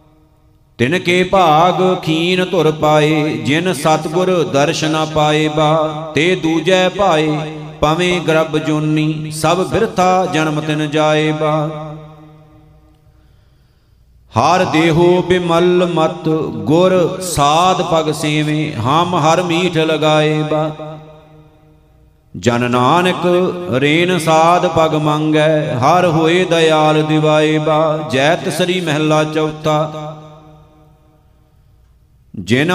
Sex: male